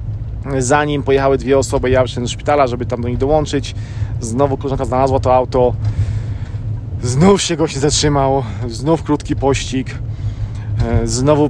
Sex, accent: male, native